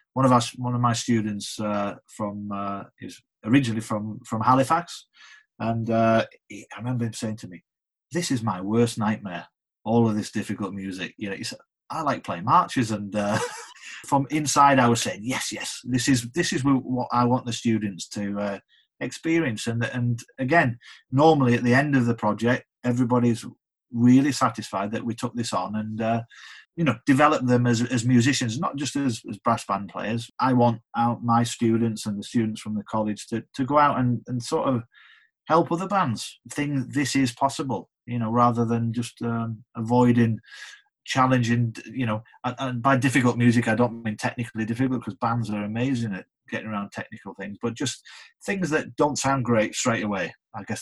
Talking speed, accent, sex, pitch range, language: 190 wpm, British, male, 110-130 Hz, English